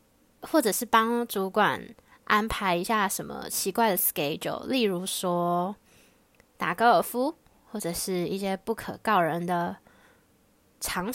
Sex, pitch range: female, 190-230 Hz